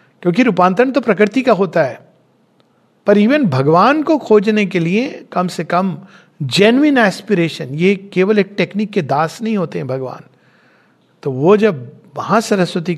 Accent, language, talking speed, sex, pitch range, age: Indian, English, 155 wpm, male, 150-220 Hz, 50-69